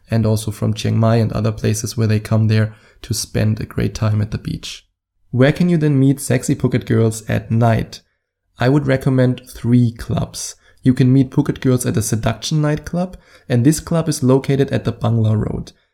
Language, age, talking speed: English, 20-39, 205 wpm